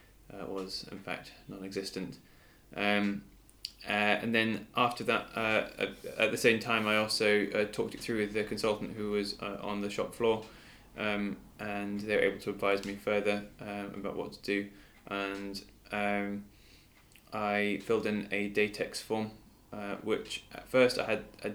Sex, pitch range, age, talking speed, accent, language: male, 100-105 Hz, 20-39, 175 wpm, British, English